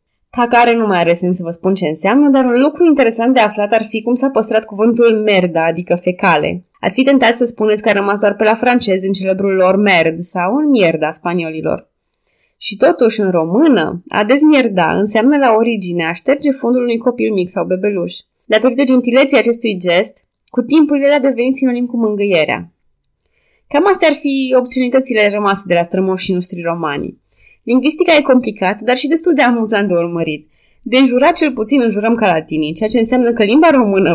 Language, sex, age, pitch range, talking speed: Romanian, female, 20-39, 185-255 Hz, 195 wpm